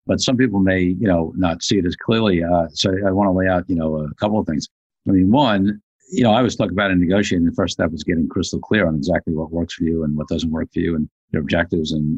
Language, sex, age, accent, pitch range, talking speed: English, male, 50-69, American, 80-95 Hz, 285 wpm